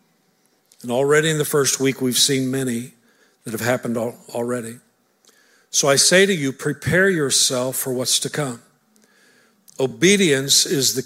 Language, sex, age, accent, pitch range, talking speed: English, male, 50-69, American, 125-165 Hz, 145 wpm